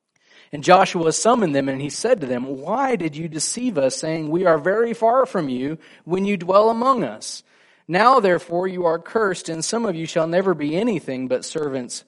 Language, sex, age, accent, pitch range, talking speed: English, male, 40-59, American, 125-180 Hz, 205 wpm